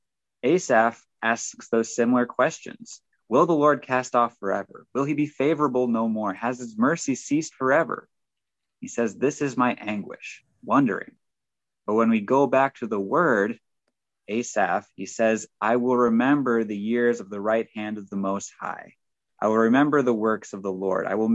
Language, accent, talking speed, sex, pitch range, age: English, American, 175 wpm, male, 105-130 Hz, 20-39